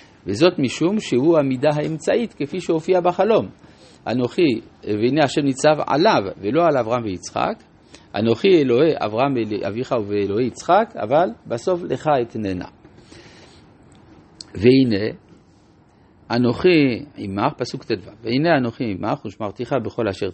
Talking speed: 110 wpm